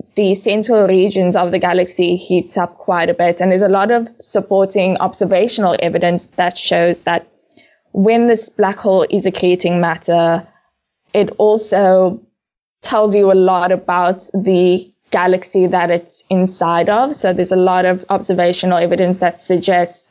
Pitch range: 175-195 Hz